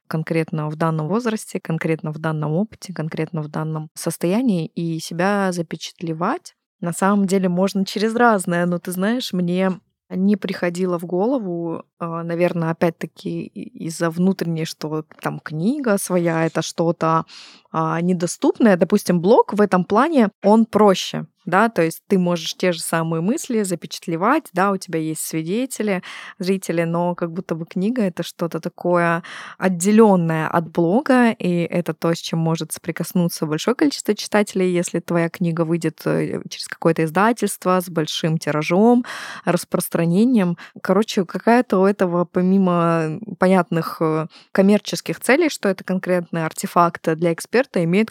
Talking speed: 140 wpm